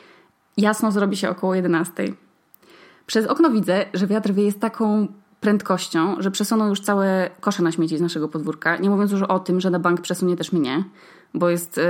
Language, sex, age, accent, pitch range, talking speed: Polish, female, 20-39, native, 175-220 Hz, 185 wpm